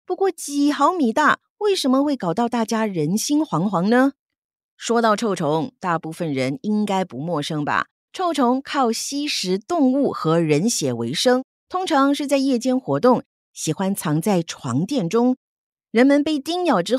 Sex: female